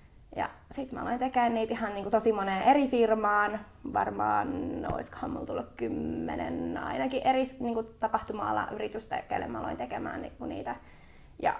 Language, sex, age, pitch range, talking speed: Finnish, female, 20-39, 210-245 Hz, 145 wpm